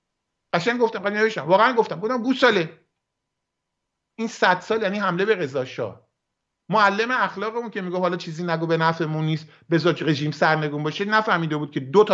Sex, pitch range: male, 170-225 Hz